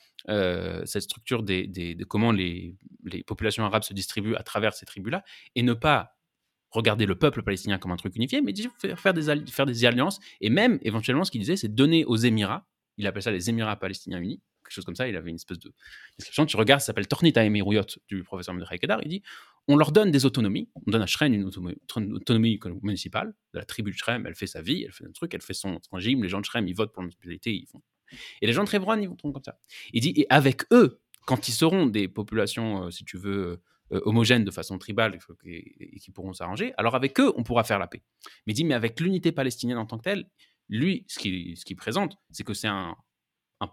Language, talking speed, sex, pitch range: French, 240 wpm, male, 95-125 Hz